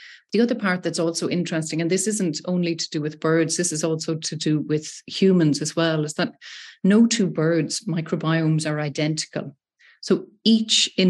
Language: English